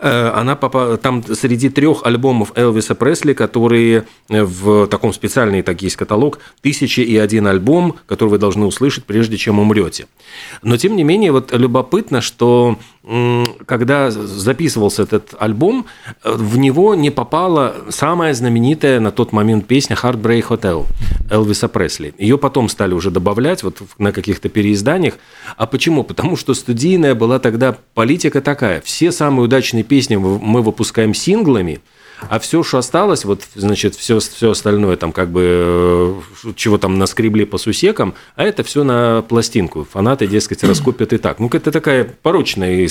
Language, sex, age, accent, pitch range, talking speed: Russian, male, 40-59, native, 105-130 Hz, 150 wpm